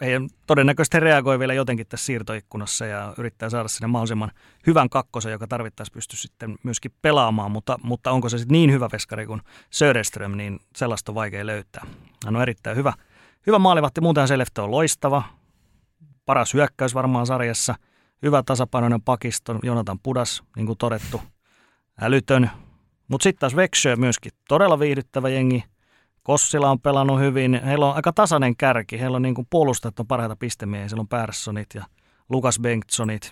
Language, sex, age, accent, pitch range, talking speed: Finnish, male, 30-49, native, 110-140 Hz, 160 wpm